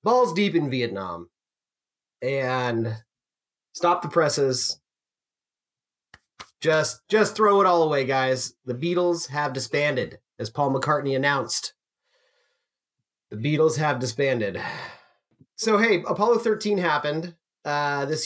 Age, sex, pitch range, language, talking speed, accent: 30-49, male, 140-200 Hz, English, 110 wpm, American